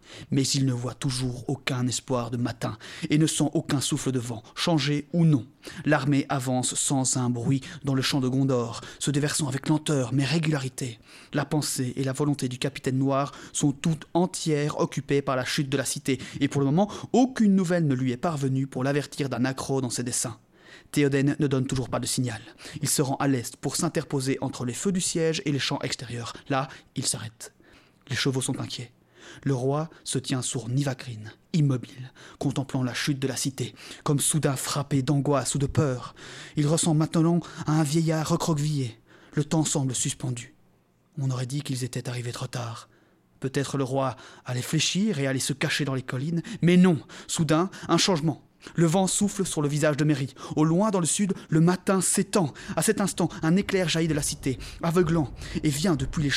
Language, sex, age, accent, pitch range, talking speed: French, male, 30-49, French, 130-160 Hz, 200 wpm